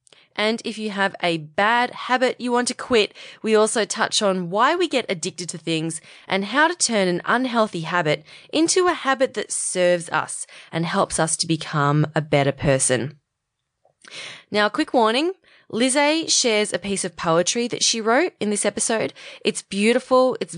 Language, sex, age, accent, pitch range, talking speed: English, female, 20-39, Australian, 165-220 Hz, 180 wpm